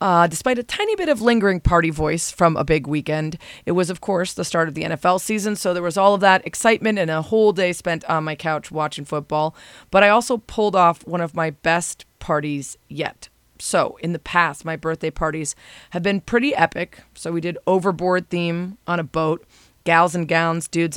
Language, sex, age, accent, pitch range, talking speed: English, female, 30-49, American, 160-190 Hz, 210 wpm